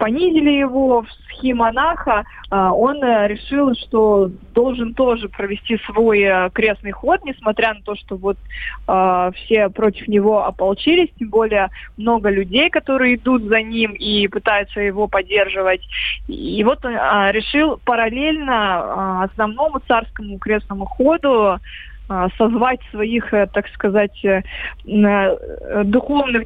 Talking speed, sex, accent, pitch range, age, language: 110 wpm, female, native, 200-250 Hz, 20-39, Russian